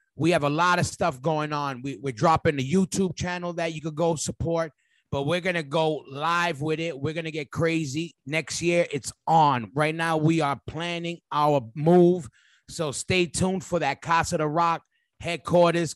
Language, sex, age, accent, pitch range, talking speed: English, male, 30-49, American, 155-190 Hz, 195 wpm